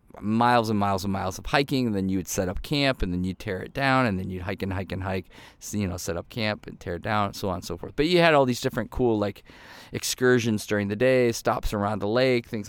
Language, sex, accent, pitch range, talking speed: English, male, American, 105-125 Hz, 285 wpm